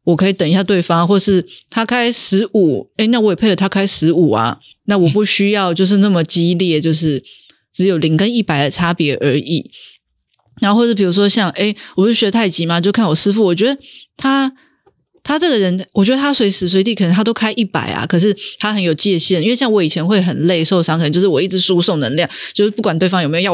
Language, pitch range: Chinese, 175-225 Hz